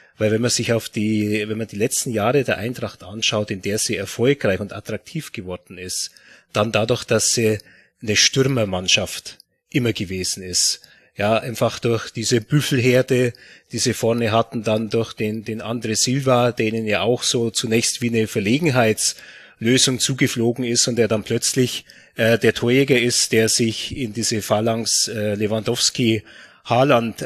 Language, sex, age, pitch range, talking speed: German, male, 30-49, 105-125 Hz, 160 wpm